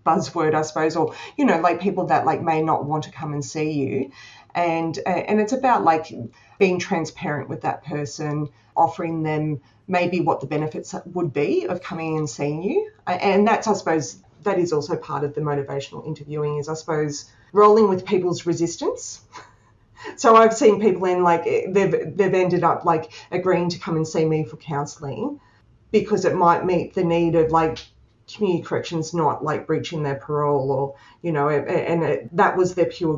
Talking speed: 185 wpm